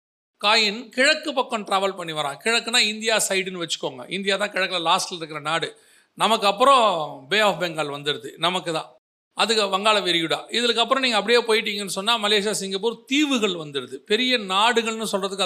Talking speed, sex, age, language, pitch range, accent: 145 wpm, male, 40-59, Tamil, 190-245 Hz, native